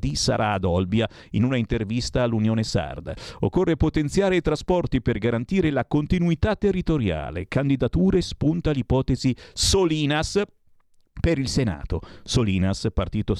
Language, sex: Italian, male